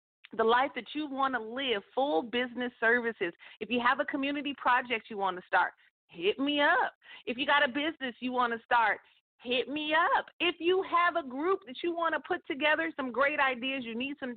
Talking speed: 215 wpm